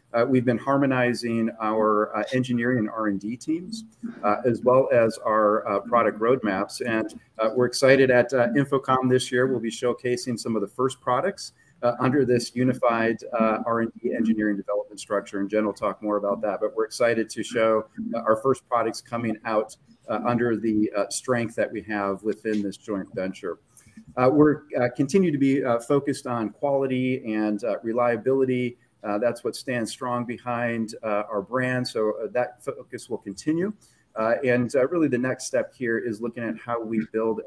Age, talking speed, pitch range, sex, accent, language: 40-59, 185 wpm, 110-130 Hz, male, American, English